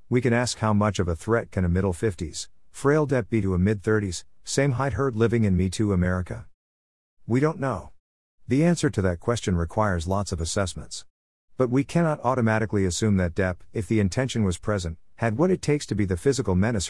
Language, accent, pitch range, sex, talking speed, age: English, American, 90-115 Hz, male, 210 wpm, 50-69